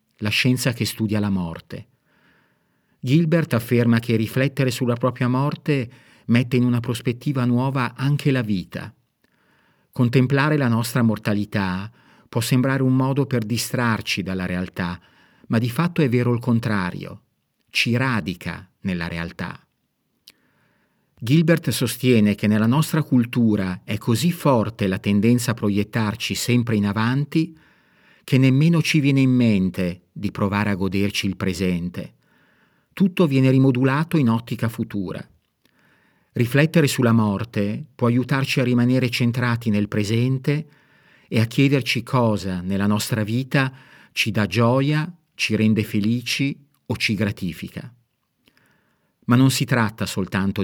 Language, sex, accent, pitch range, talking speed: Italian, male, native, 105-130 Hz, 130 wpm